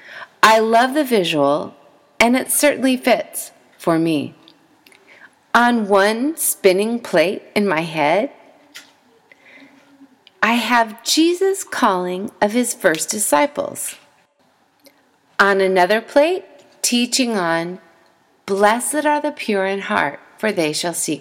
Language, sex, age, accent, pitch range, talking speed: English, female, 40-59, American, 185-265 Hz, 115 wpm